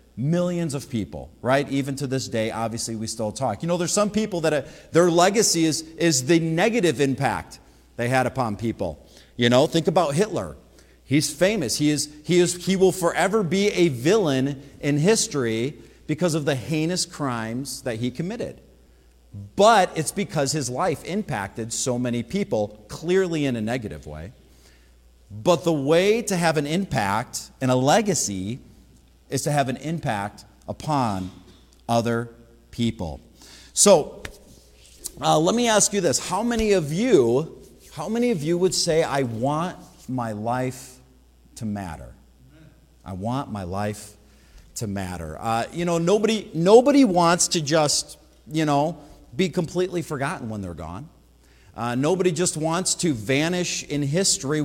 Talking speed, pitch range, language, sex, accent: 155 wpm, 110-175 Hz, English, male, American